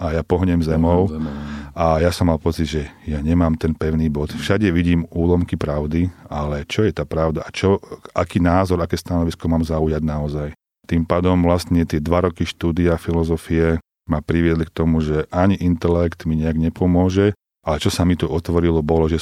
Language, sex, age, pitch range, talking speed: Slovak, male, 40-59, 75-85 Hz, 185 wpm